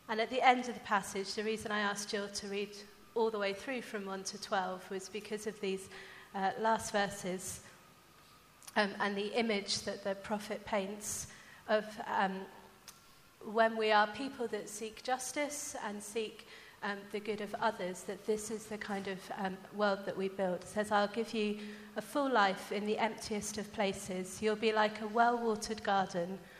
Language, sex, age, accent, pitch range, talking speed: English, female, 30-49, British, 190-215 Hz, 185 wpm